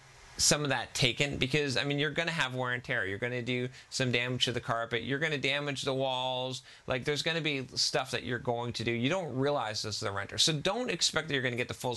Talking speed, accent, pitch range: 285 wpm, American, 105-135 Hz